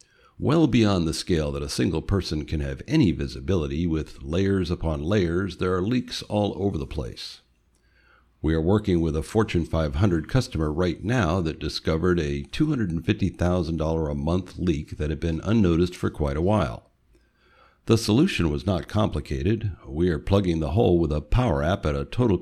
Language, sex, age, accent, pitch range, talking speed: English, male, 60-79, American, 75-100 Hz, 175 wpm